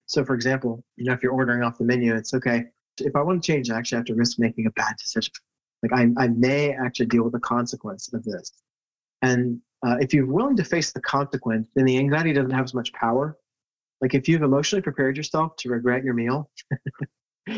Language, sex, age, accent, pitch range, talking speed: English, male, 30-49, American, 115-135 Hz, 220 wpm